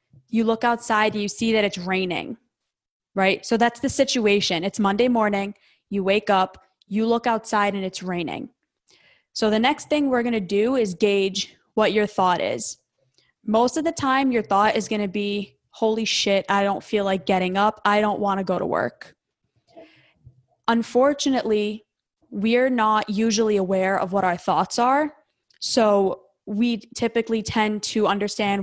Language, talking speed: English, 165 wpm